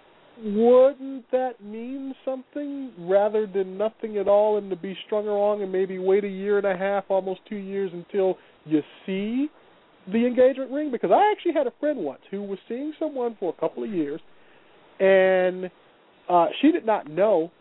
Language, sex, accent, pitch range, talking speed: English, male, American, 180-255 Hz, 180 wpm